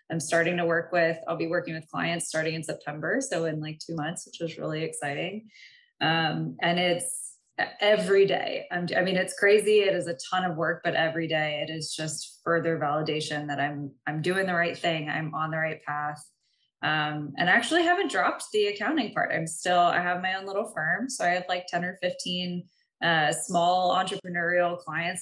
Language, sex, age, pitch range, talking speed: English, female, 20-39, 160-205 Hz, 205 wpm